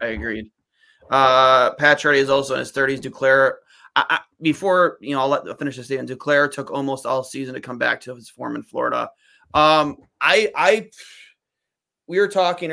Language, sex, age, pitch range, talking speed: English, male, 30-49, 130-150 Hz, 195 wpm